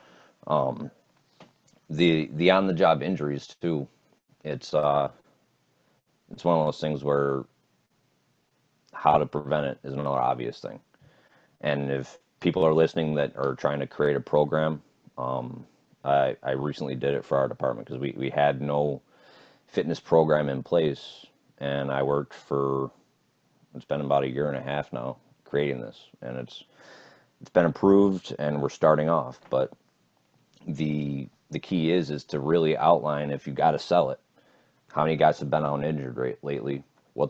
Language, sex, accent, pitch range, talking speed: English, male, American, 70-80 Hz, 165 wpm